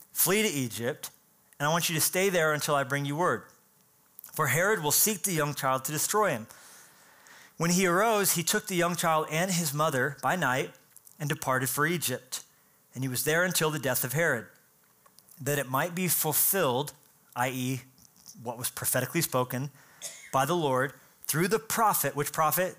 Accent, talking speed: American, 180 wpm